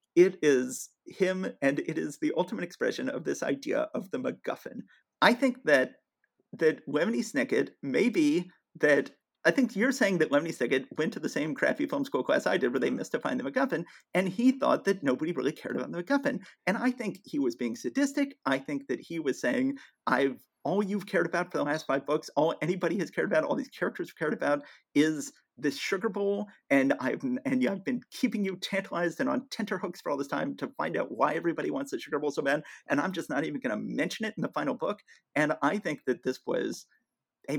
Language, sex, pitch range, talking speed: English, male, 170-275 Hz, 225 wpm